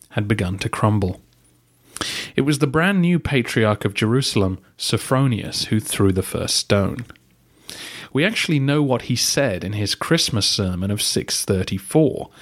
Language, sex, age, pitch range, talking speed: English, male, 30-49, 100-130 Hz, 145 wpm